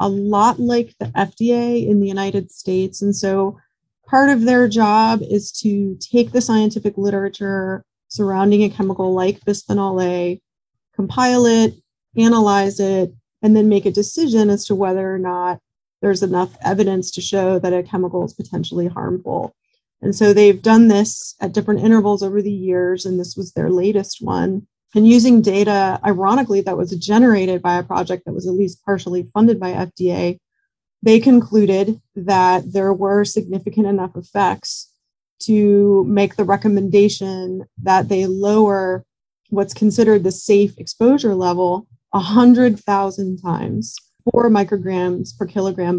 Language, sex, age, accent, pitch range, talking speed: English, female, 30-49, American, 185-215 Hz, 150 wpm